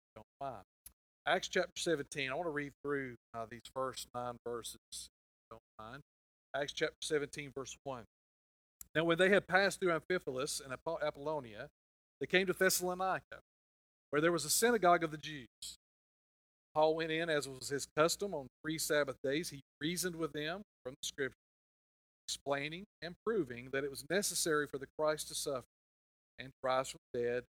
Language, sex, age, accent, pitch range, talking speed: English, male, 50-69, American, 120-165 Hz, 170 wpm